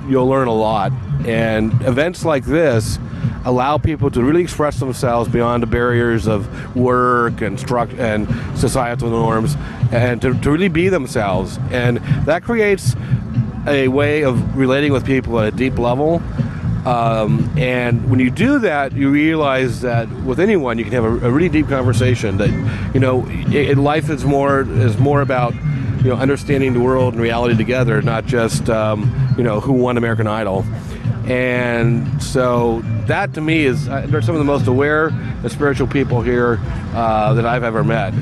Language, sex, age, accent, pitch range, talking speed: English, male, 40-59, American, 120-140 Hz, 175 wpm